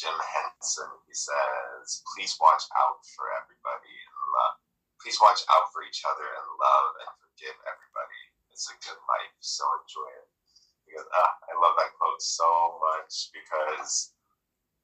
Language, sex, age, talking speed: English, male, 20-39, 155 wpm